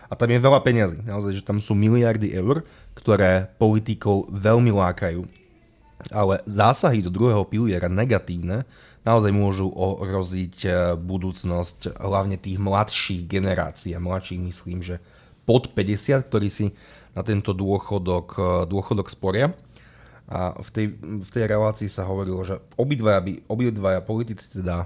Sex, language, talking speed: male, Slovak, 135 wpm